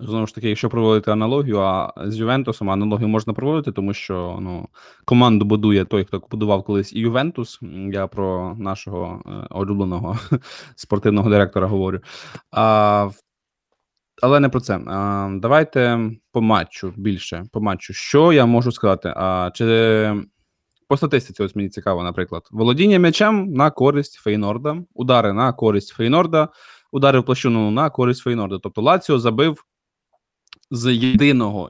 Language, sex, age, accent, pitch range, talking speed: Ukrainian, male, 20-39, native, 105-135 Hz, 140 wpm